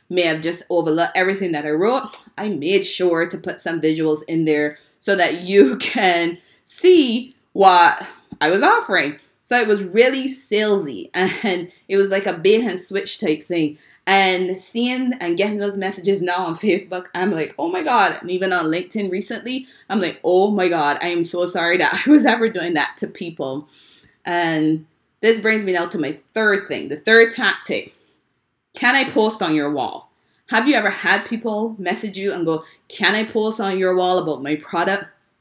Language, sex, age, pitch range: English, female, 20-39, 170-215 Hz